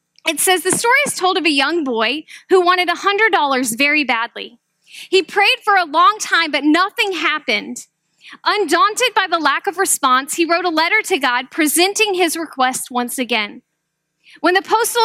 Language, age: English, 10-29